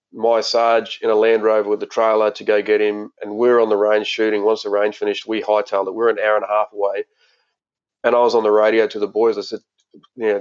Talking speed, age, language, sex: 285 wpm, 30-49, English, male